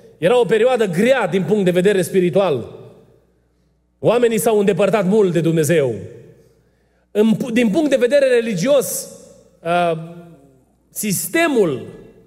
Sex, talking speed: male, 105 wpm